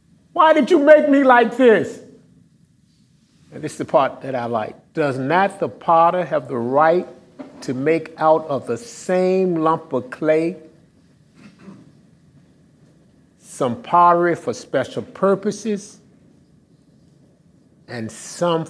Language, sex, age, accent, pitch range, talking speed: English, male, 50-69, American, 155-210 Hz, 120 wpm